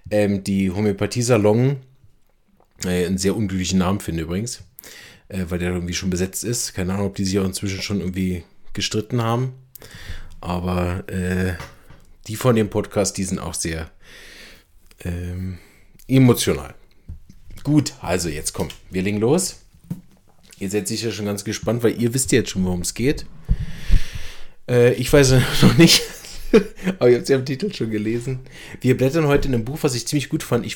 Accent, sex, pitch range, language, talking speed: German, male, 95-125 Hz, German, 175 wpm